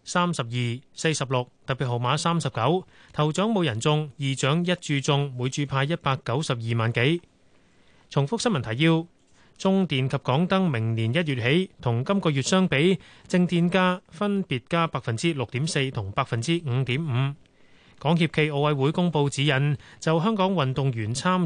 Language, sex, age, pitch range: Chinese, male, 30-49, 135-175 Hz